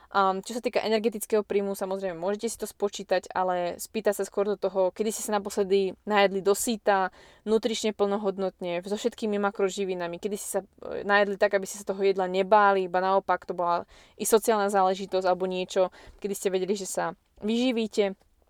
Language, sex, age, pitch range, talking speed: Slovak, female, 20-39, 195-220 Hz, 175 wpm